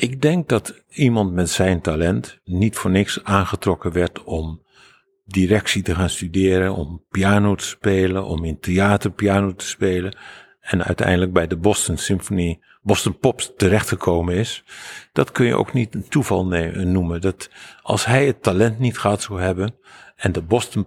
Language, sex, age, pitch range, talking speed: Dutch, male, 50-69, 90-105 Hz, 165 wpm